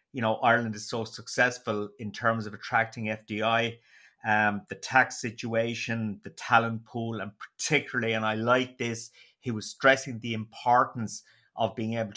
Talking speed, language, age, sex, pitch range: 160 wpm, English, 30-49, male, 110-120 Hz